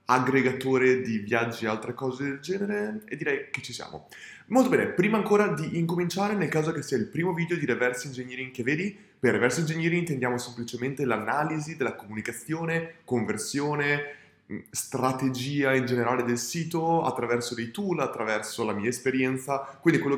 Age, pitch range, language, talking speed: 20-39, 120-165 Hz, Italian, 160 wpm